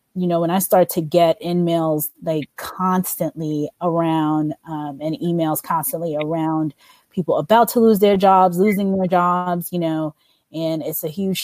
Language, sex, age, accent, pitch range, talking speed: English, female, 30-49, American, 155-180 Hz, 165 wpm